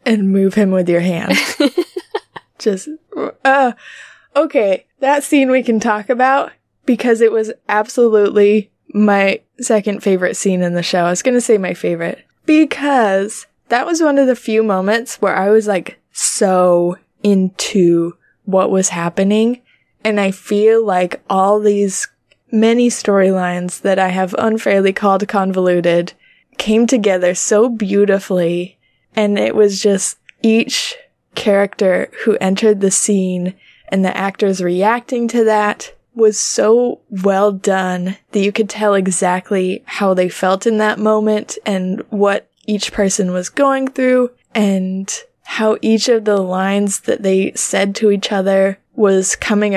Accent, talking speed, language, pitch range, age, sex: American, 145 wpm, English, 190-225 Hz, 20-39, female